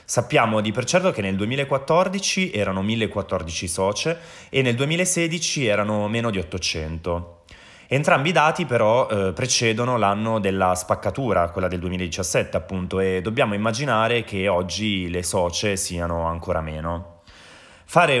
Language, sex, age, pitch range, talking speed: Italian, male, 20-39, 95-120 Hz, 135 wpm